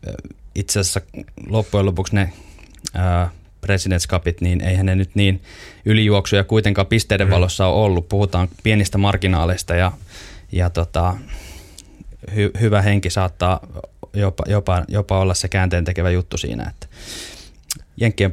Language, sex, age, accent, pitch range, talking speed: Finnish, male, 20-39, native, 90-100 Hz, 125 wpm